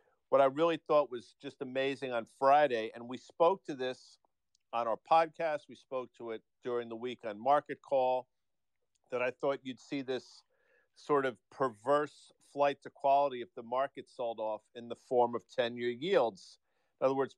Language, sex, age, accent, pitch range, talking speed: English, male, 50-69, American, 120-145 Hz, 185 wpm